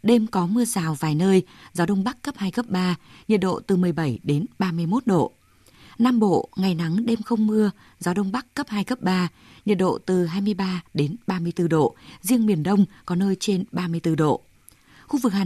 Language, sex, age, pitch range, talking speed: Vietnamese, female, 20-39, 165-215 Hz, 200 wpm